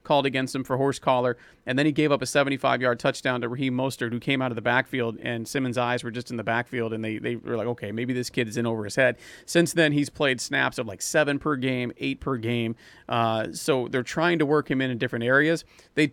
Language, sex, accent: English, male, American